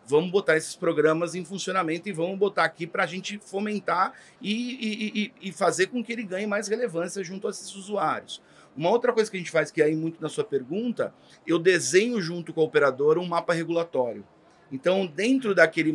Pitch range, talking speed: 155-215 Hz, 205 wpm